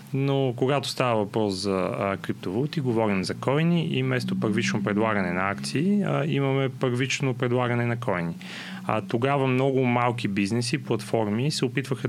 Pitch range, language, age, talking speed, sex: 105-130 Hz, Bulgarian, 30-49, 145 wpm, male